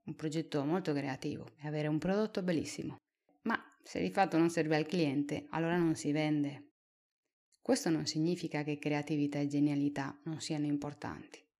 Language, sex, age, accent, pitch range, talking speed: Italian, female, 30-49, native, 145-170 Hz, 160 wpm